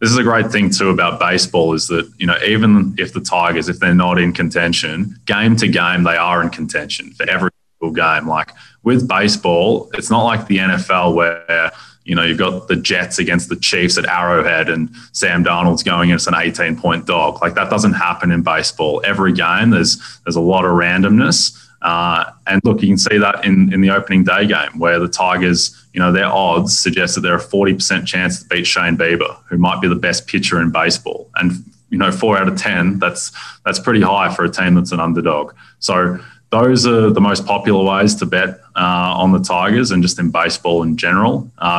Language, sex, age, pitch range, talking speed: English, male, 20-39, 85-100 Hz, 215 wpm